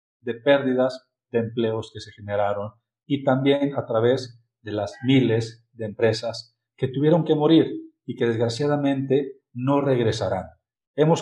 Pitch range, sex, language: 120-155 Hz, male, Spanish